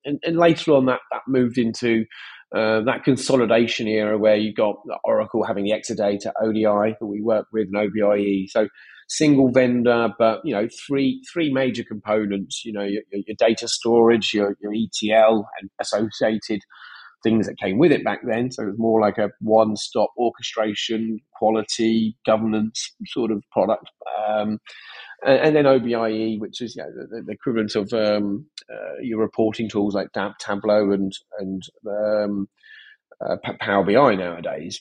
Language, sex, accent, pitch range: English, male, British, 105-125 Hz